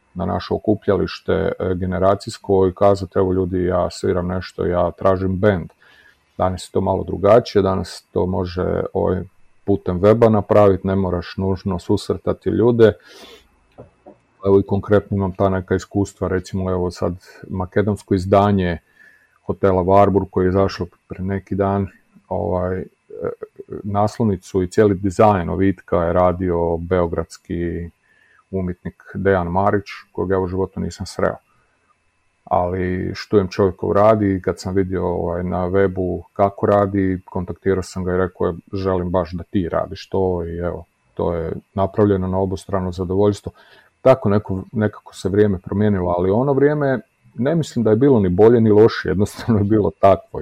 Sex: male